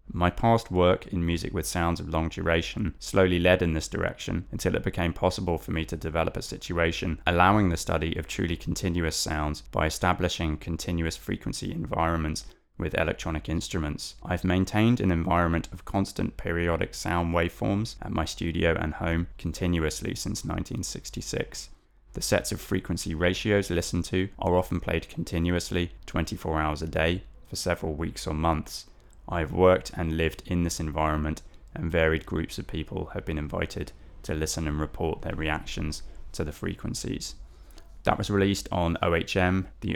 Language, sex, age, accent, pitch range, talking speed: English, male, 20-39, British, 80-90 Hz, 160 wpm